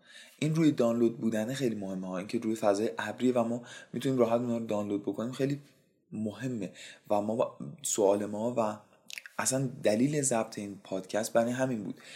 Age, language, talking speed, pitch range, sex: 20-39, Persian, 170 wpm, 105-135 Hz, male